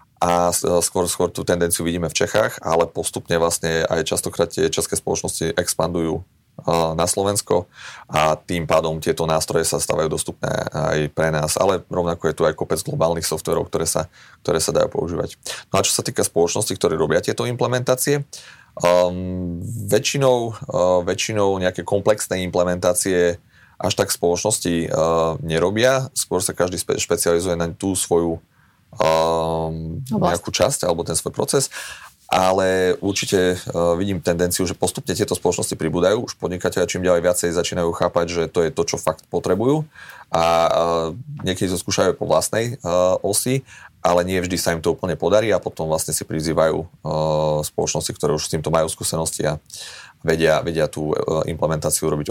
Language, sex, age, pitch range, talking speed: Slovak, male, 30-49, 80-105 Hz, 155 wpm